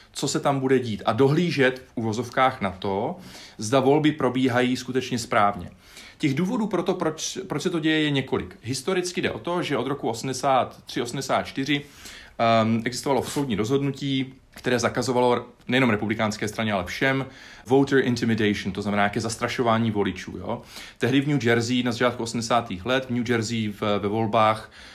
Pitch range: 105-130 Hz